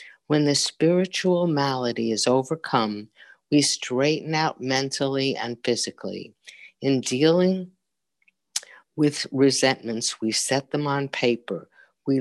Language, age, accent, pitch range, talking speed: English, 50-69, American, 120-150 Hz, 110 wpm